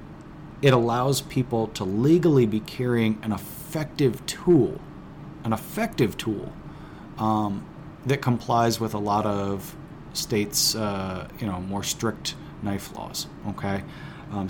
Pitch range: 100-140 Hz